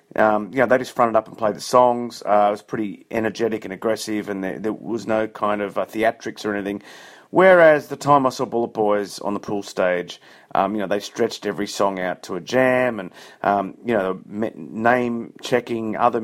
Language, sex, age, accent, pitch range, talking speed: English, male, 30-49, Australian, 105-130 Hz, 210 wpm